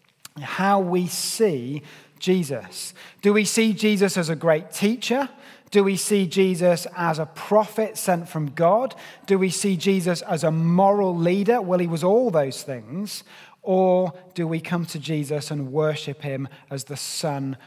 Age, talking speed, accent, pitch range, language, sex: 30-49, 165 wpm, British, 160-195 Hz, English, male